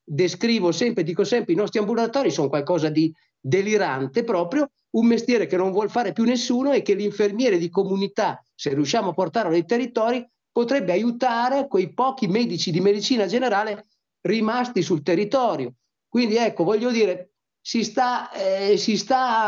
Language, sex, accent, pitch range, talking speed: Italian, male, native, 180-235 Hz, 145 wpm